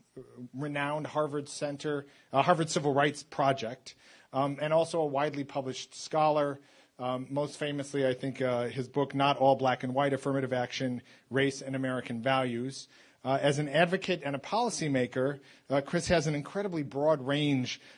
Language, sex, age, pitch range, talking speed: English, male, 40-59, 130-150 Hz, 165 wpm